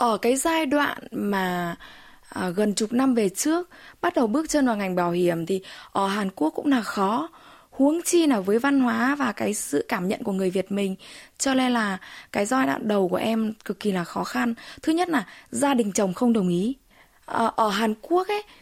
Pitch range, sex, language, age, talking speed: 205-270 Hz, female, Vietnamese, 20-39, 215 wpm